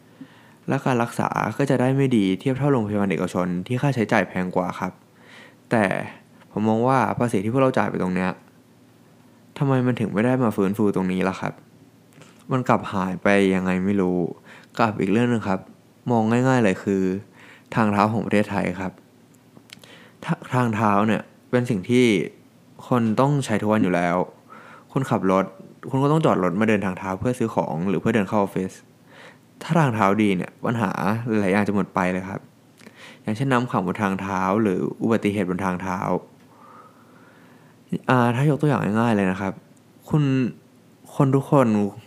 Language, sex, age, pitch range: Thai, male, 20-39, 95-125 Hz